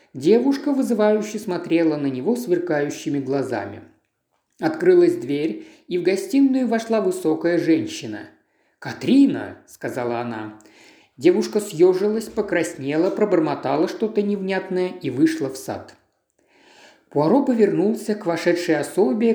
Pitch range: 160-245 Hz